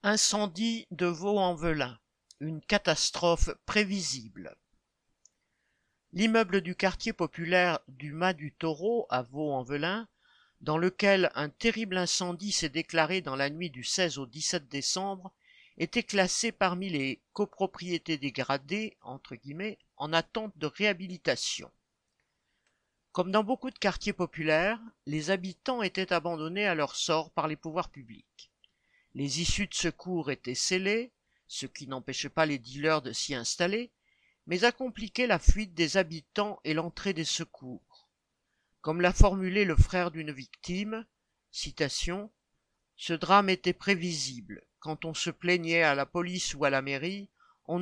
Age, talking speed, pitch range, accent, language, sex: 50-69, 140 wpm, 155-200 Hz, French, French, male